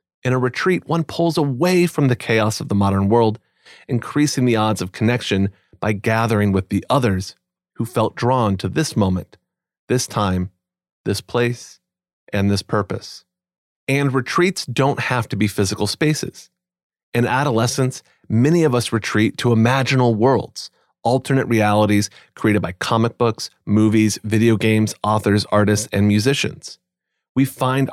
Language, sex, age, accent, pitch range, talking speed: English, male, 30-49, American, 100-130 Hz, 145 wpm